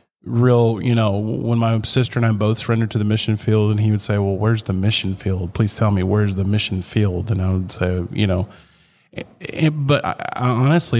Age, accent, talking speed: 30-49, American, 205 wpm